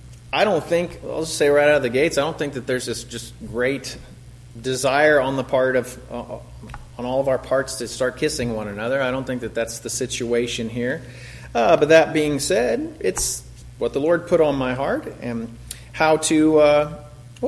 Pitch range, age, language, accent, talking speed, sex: 120-155 Hz, 30-49, English, American, 205 wpm, male